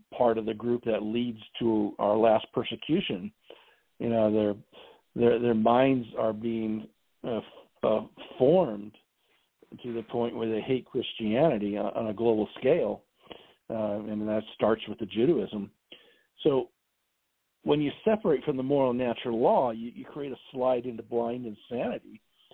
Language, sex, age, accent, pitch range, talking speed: English, male, 50-69, American, 115-135 Hz, 150 wpm